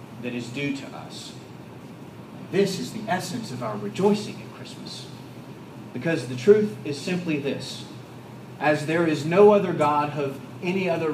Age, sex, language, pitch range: 40-59, male, English, 130-195 Hz